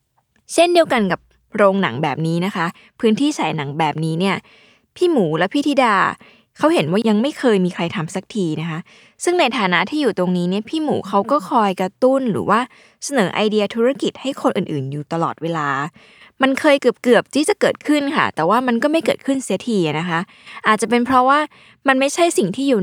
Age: 20-39